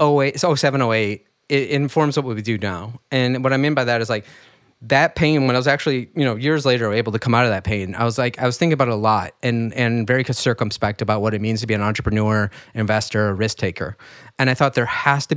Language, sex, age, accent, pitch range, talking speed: English, male, 30-49, American, 110-140 Hz, 245 wpm